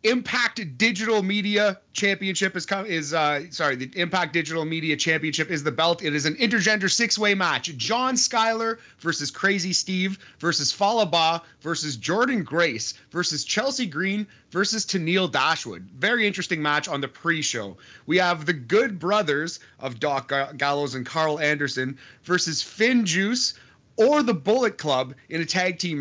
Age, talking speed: 30-49, 150 wpm